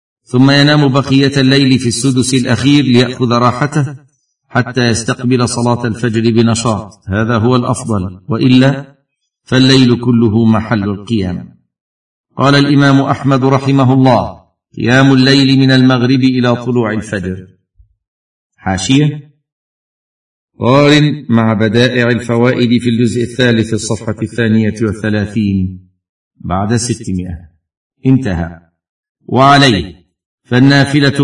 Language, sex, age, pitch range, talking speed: Arabic, male, 50-69, 110-135 Hz, 95 wpm